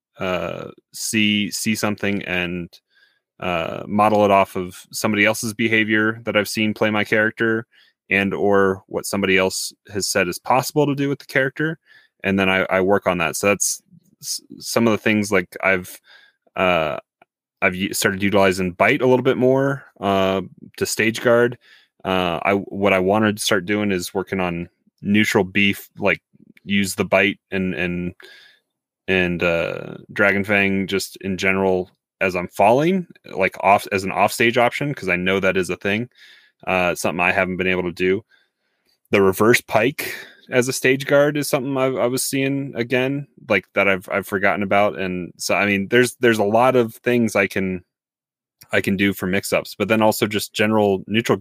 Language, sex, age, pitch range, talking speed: English, male, 20-39, 95-115 Hz, 180 wpm